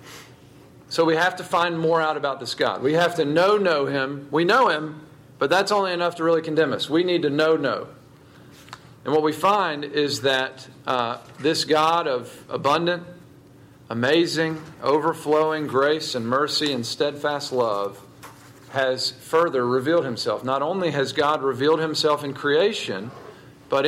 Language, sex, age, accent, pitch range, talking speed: English, male, 40-59, American, 135-175 Hz, 155 wpm